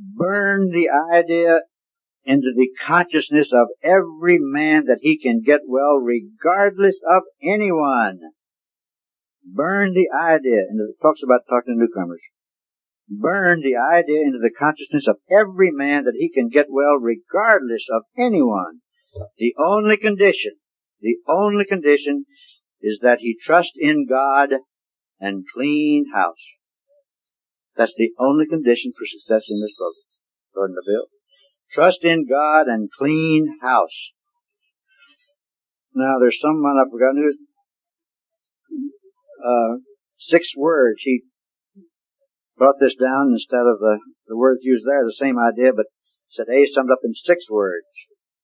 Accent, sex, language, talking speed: American, male, English, 135 wpm